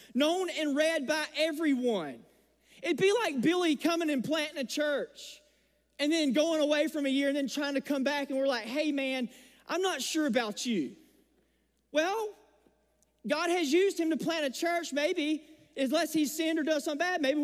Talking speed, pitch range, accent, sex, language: 190 wpm, 270-320 Hz, American, male, English